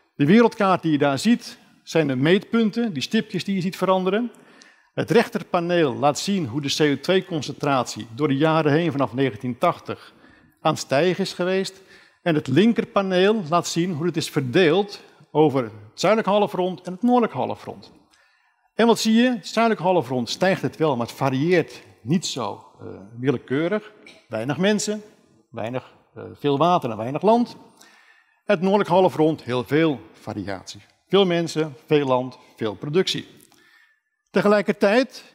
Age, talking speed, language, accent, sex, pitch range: 50-69, 150 wpm, Dutch, Dutch, male, 135-210 Hz